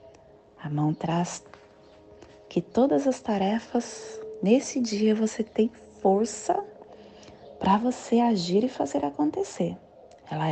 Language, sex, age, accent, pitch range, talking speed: Portuguese, female, 30-49, Brazilian, 165-235 Hz, 110 wpm